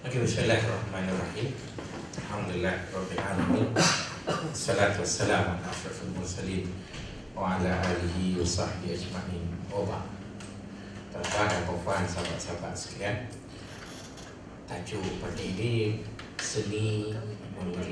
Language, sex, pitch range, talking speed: Malay, male, 95-110 Hz, 90 wpm